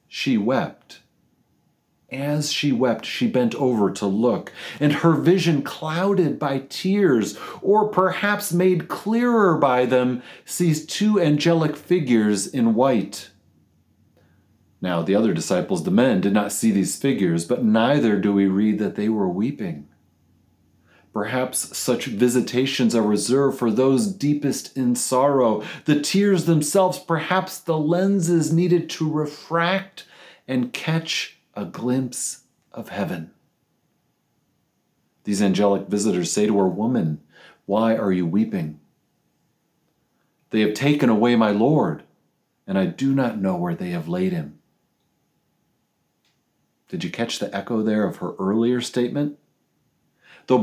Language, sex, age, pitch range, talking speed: English, male, 40-59, 105-165 Hz, 130 wpm